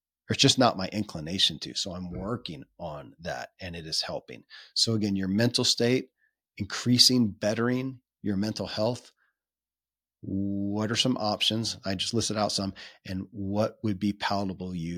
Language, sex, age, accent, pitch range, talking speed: English, male, 40-59, American, 95-120 Hz, 155 wpm